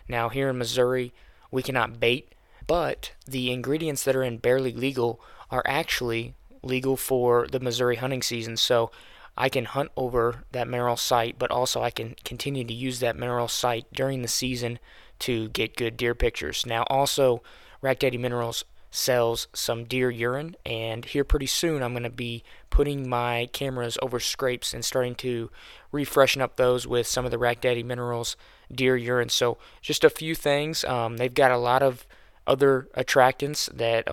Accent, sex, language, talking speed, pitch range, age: American, male, English, 175 wpm, 120-135 Hz, 20-39